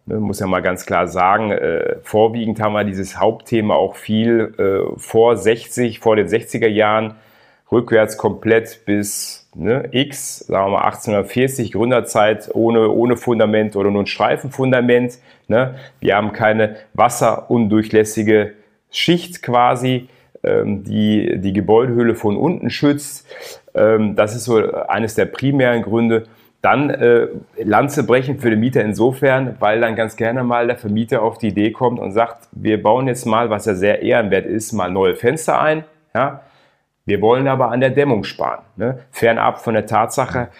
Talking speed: 155 wpm